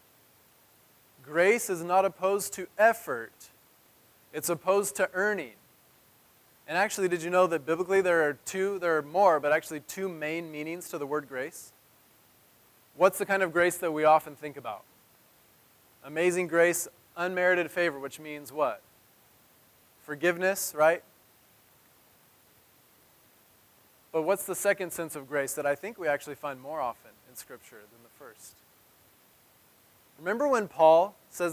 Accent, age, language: American, 20-39, English